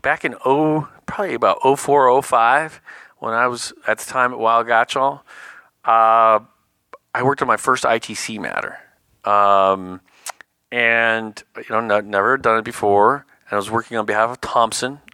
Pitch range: 95-115 Hz